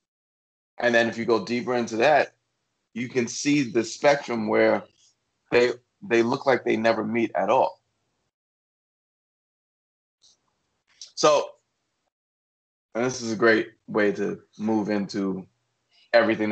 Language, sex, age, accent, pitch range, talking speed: English, male, 20-39, American, 100-120 Hz, 125 wpm